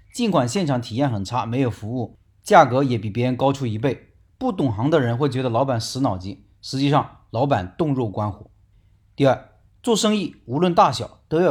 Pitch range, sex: 115-165 Hz, male